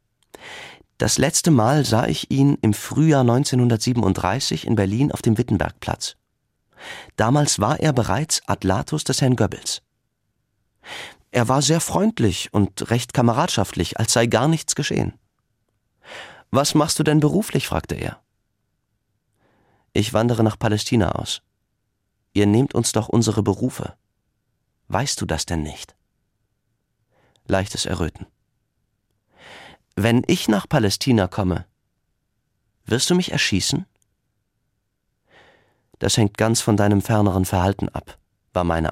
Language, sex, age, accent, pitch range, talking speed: German, male, 40-59, German, 100-130 Hz, 120 wpm